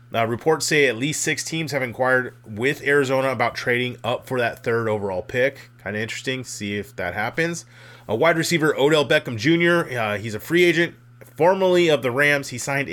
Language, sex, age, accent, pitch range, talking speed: English, male, 30-49, American, 115-135 Hz, 200 wpm